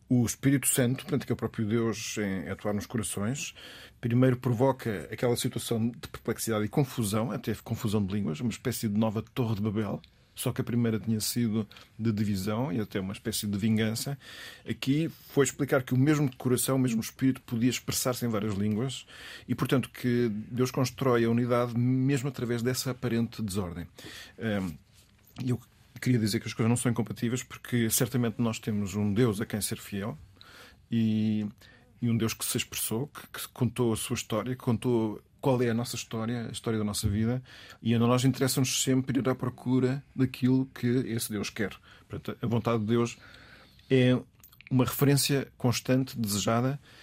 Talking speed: 180 wpm